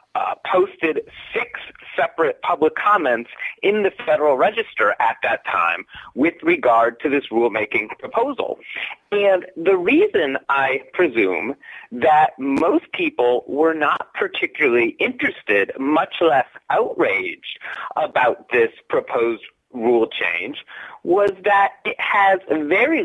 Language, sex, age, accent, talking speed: English, male, 40-59, American, 115 wpm